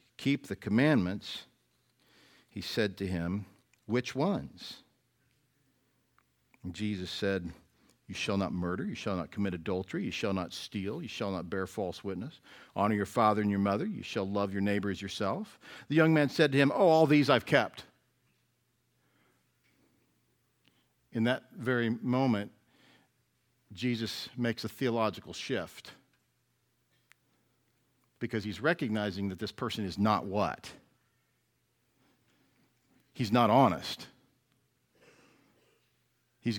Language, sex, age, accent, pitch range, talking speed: English, male, 50-69, American, 100-140 Hz, 125 wpm